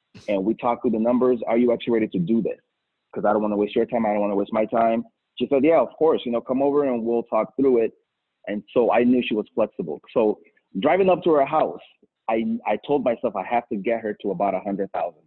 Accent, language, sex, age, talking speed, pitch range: American, English, male, 30-49, 265 wpm, 105-130 Hz